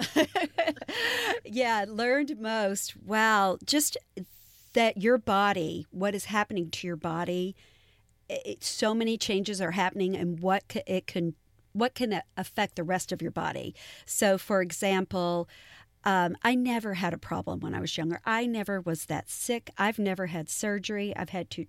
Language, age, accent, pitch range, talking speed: English, 50-69, American, 185-230 Hz, 160 wpm